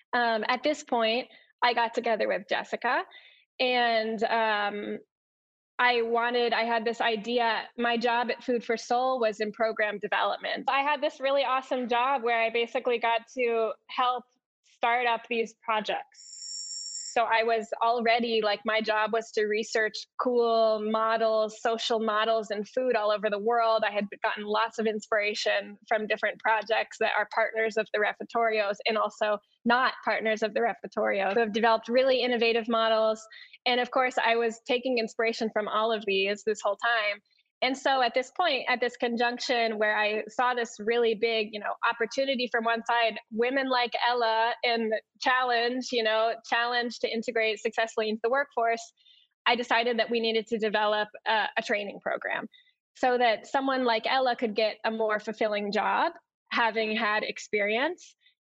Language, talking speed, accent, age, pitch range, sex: English, 170 wpm, American, 10-29, 220-245 Hz, female